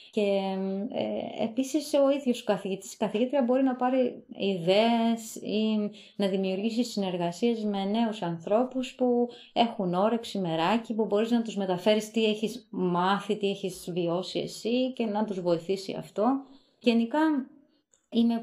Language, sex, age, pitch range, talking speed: Greek, female, 20-39, 185-230 Hz, 135 wpm